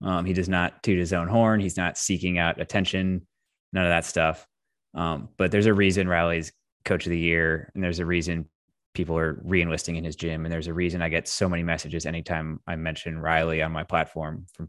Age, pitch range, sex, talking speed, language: 20-39, 85-95 Hz, male, 220 wpm, English